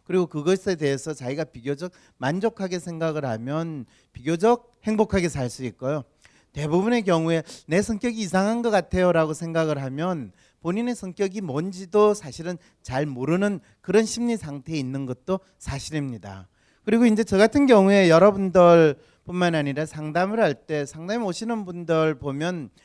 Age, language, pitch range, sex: 40-59, Korean, 145-195 Hz, male